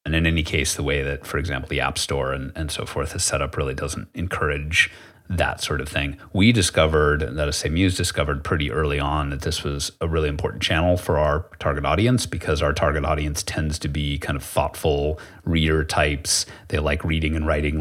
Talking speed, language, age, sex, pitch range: 215 wpm, English, 30-49, male, 75-85 Hz